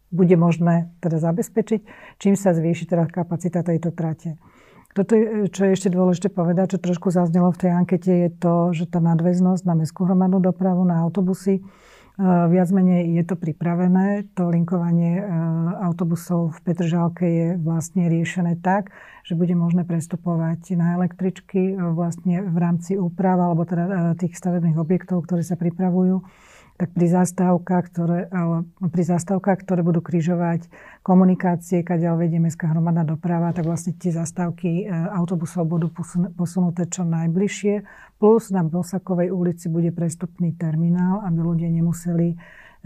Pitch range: 165-180 Hz